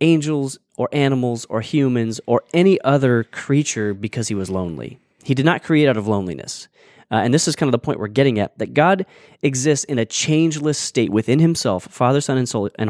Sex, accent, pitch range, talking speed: male, American, 110-145 Hz, 200 wpm